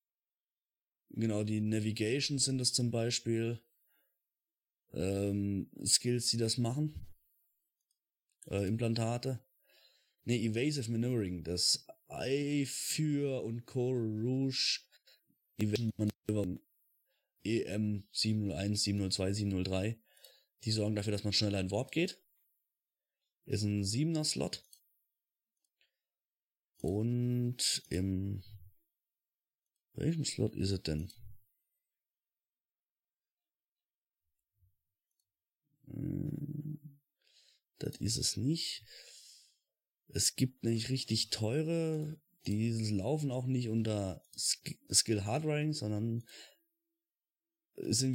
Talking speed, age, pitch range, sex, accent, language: 80 wpm, 30-49, 105-135 Hz, male, German, German